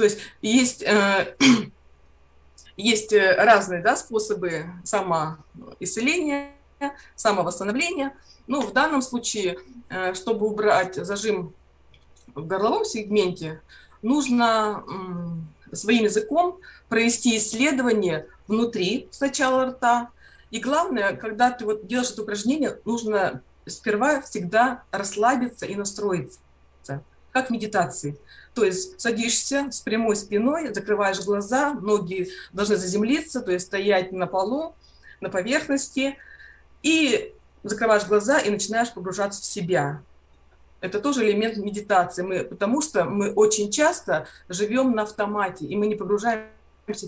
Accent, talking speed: native, 110 wpm